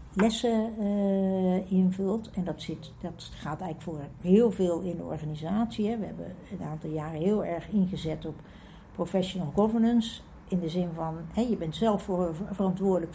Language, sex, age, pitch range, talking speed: Dutch, female, 60-79, 160-195 Hz, 150 wpm